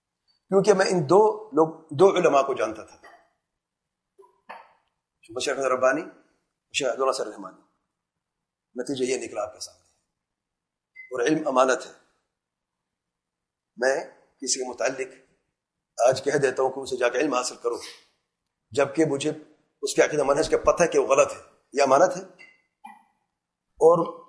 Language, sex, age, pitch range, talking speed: English, male, 40-59, 165-215 Hz, 115 wpm